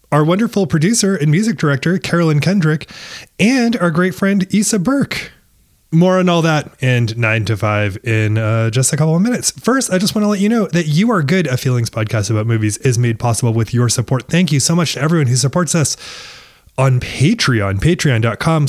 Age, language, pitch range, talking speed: 20-39, English, 120-170 Hz, 205 wpm